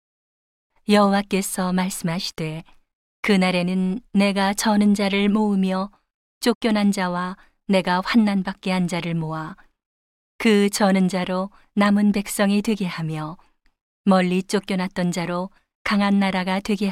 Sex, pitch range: female, 175-205 Hz